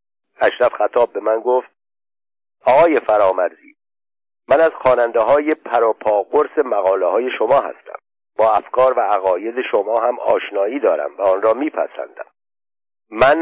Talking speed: 125 wpm